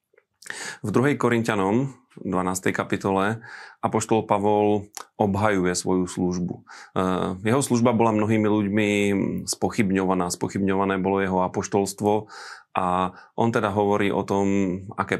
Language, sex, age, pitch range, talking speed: Slovak, male, 30-49, 100-105 Hz, 105 wpm